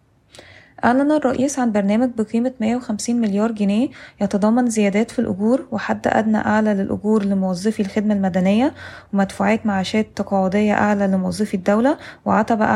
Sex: female